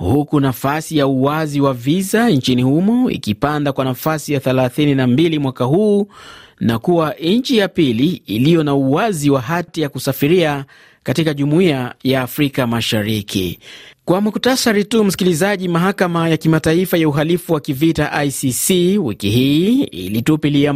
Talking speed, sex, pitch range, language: 135 wpm, male, 135-170 Hz, Swahili